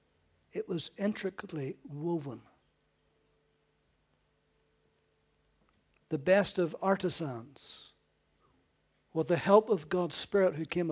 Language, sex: English, male